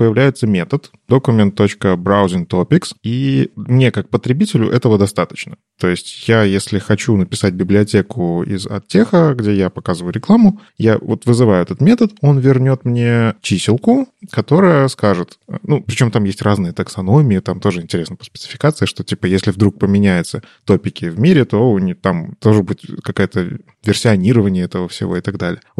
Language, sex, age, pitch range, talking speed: Russian, male, 20-39, 100-135 Hz, 150 wpm